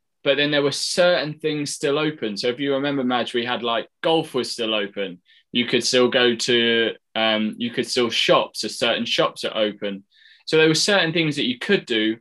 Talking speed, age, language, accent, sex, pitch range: 215 wpm, 20-39, English, British, male, 115-145 Hz